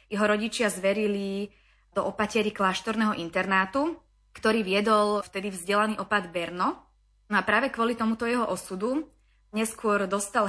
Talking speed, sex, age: 125 wpm, female, 20-39